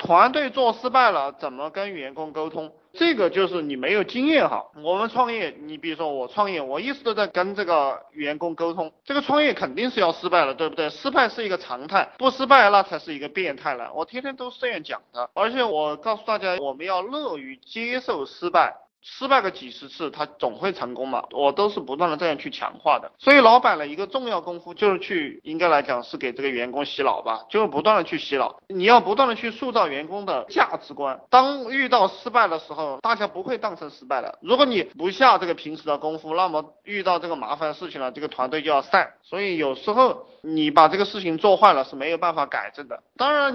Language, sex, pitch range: Chinese, male, 155-245 Hz